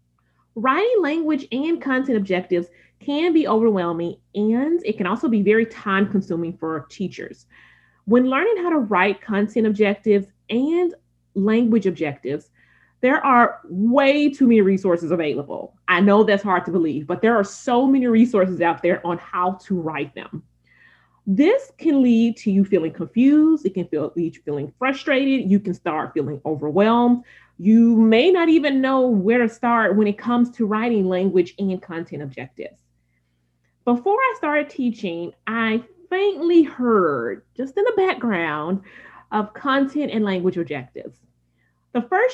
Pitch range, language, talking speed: 180-265 Hz, English, 150 wpm